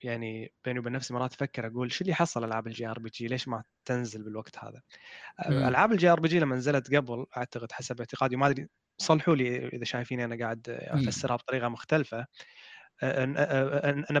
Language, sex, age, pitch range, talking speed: Arabic, male, 20-39, 120-145 Hz, 180 wpm